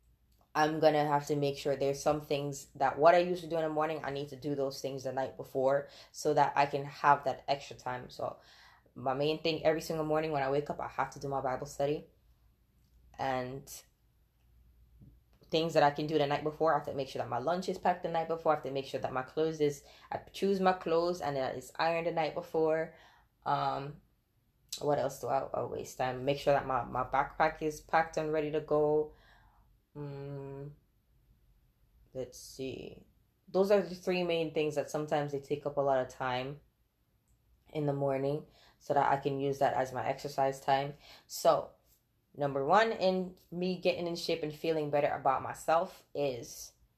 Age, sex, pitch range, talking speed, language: 20-39, female, 135-160 Hz, 205 wpm, English